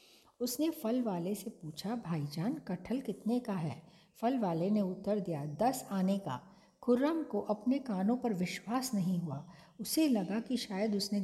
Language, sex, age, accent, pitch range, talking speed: Hindi, female, 50-69, native, 180-230 Hz, 165 wpm